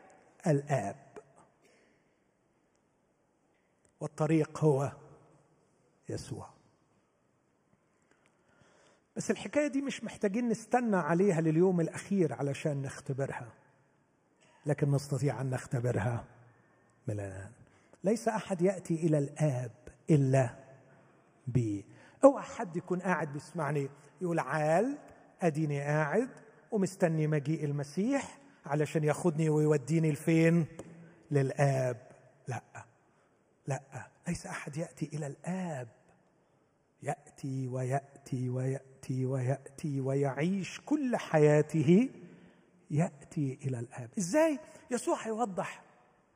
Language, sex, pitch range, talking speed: Arabic, male, 140-195 Hz, 85 wpm